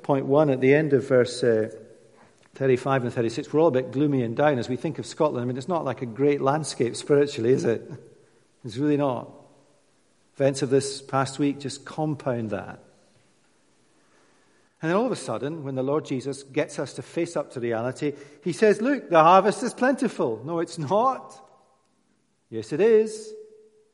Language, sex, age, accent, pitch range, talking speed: English, male, 50-69, British, 125-160 Hz, 190 wpm